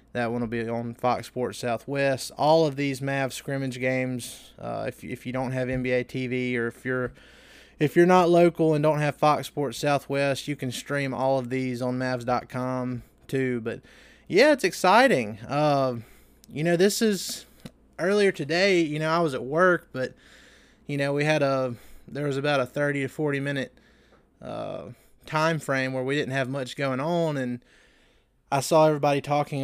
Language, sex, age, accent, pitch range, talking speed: English, male, 20-39, American, 130-165 Hz, 180 wpm